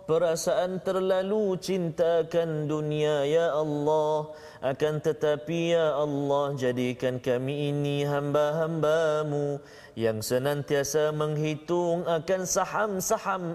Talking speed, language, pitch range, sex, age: 85 wpm, Malayalam, 145-190 Hz, male, 30-49